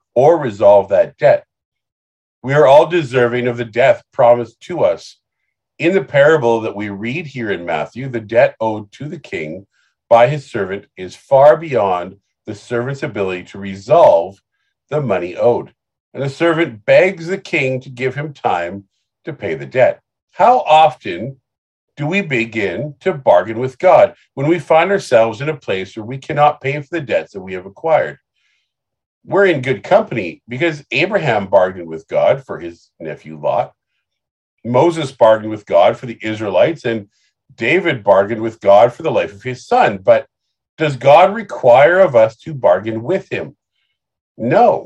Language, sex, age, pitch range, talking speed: English, male, 50-69, 115-170 Hz, 170 wpm